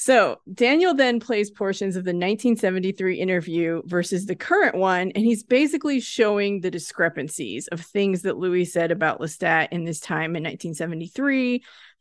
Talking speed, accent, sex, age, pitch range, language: 155 wpm, American, female, 30-49, 175-225 Hz, English